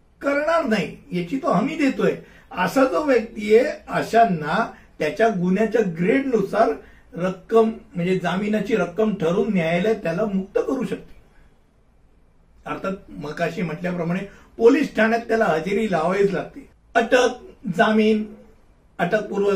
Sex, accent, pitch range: male, native, 185-235 Hz